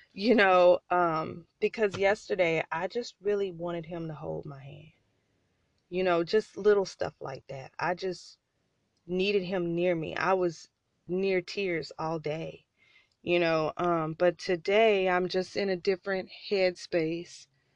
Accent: American